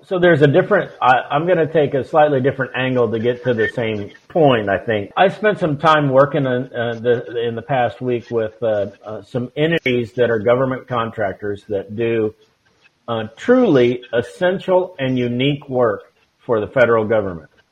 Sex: male